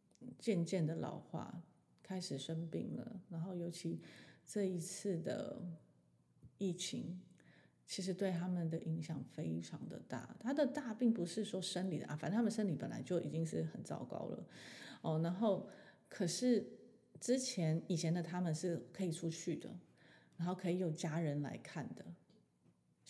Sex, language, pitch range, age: female, Chinese, 160-200 Hz, 30-49